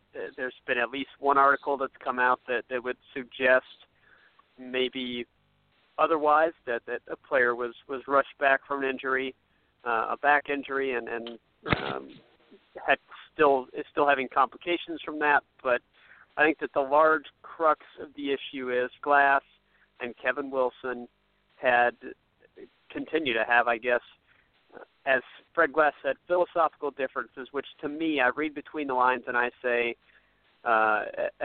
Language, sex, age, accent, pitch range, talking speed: English, male, 50-69, American, 125-145 Hz, 155 wpm